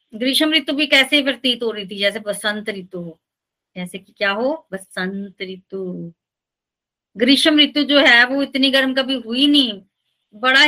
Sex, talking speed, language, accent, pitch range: female, 165 wpm, Hindi, native, 200-260 Hz